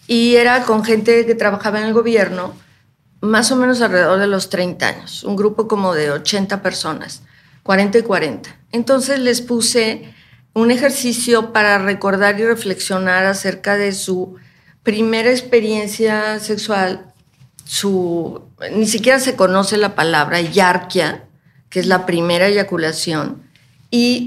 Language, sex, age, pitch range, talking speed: Spanish, female, 40-59, 185-230 Hz, 135 wpm